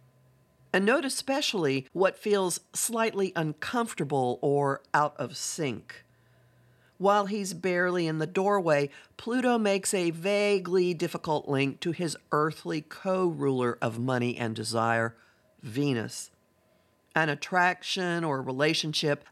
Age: 50-69